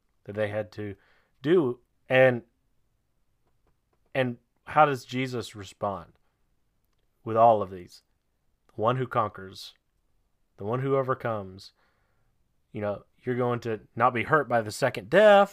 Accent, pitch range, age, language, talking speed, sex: American, 100-130 Hz, 30-49, English, 135 wpm, male